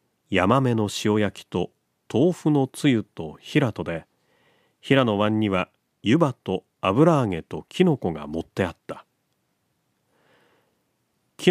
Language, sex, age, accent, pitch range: Japanese, male, 40-59, native, 95-145 Hz